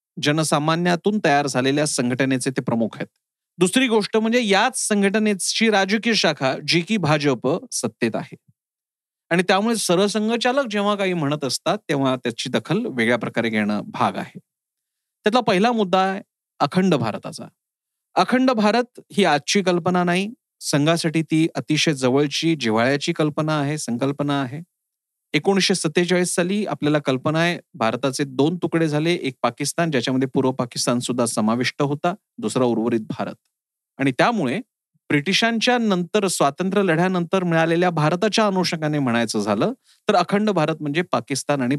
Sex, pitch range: male, 140-200 Hz